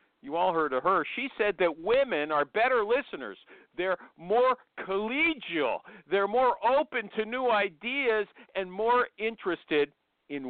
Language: English